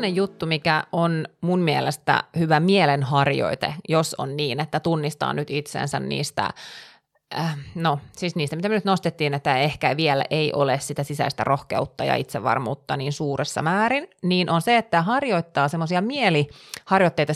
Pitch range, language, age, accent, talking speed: 150-195 Hz, Finnish, 30-49, native, 150 wpm